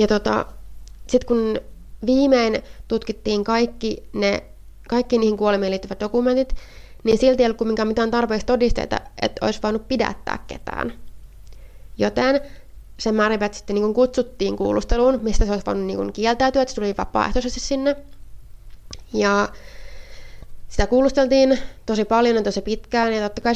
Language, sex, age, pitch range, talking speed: Finnish, female, 20-39, 190-235 Hz, 140 wpm